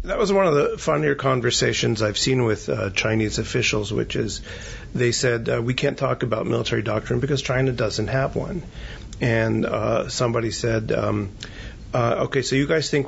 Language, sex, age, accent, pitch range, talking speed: English, male, 40-59, American, 110-130 Hz, 185 wpm